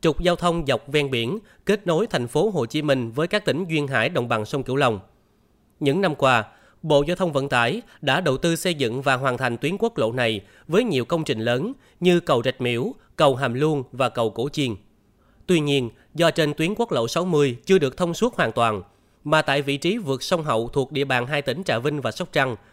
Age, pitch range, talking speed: 20-39, 120-165 Hz, 240 wpm